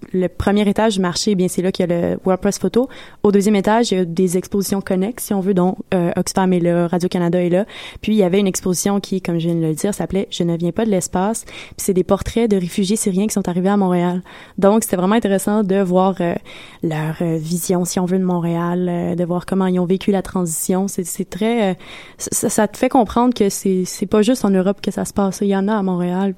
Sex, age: female, 20-39